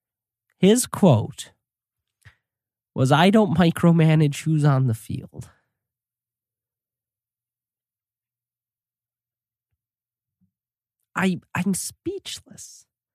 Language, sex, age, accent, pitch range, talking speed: English, male, 20-39, American, 120-200 Hz, 60 wpm